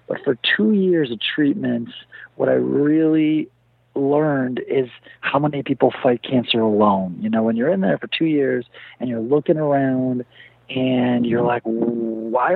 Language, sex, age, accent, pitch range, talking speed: English, male, 40-59, American, 125-150 Hz, 165 wpm